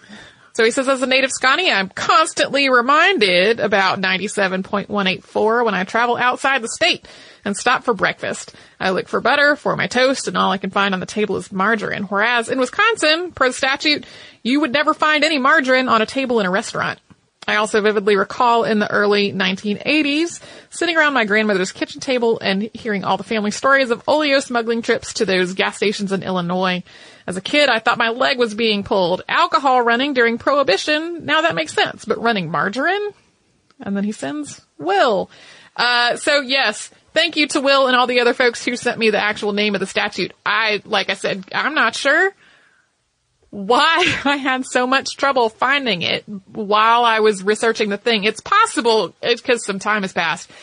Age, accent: 30-49, American